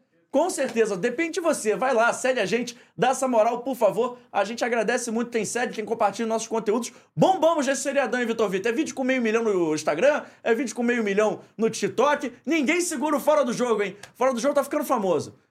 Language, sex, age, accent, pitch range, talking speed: Portuguese, male, 20-39, Brazilian, 210-270 Hz, 225 wpm